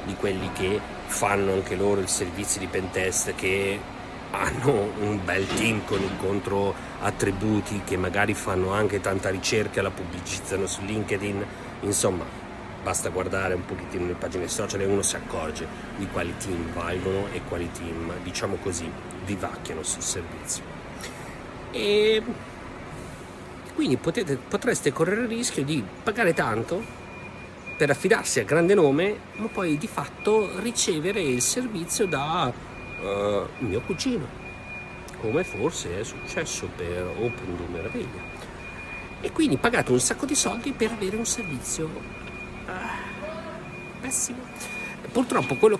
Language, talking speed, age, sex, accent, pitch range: Italian, 130 wpm, 40-59, male, native, 95-145 Hz